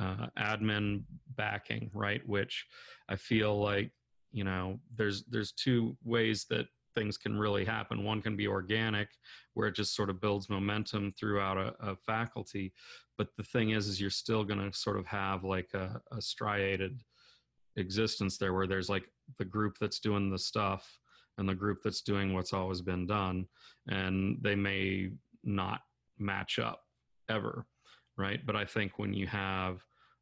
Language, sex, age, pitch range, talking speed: English, male, 40-59, 95-110 Hz, 165 wpm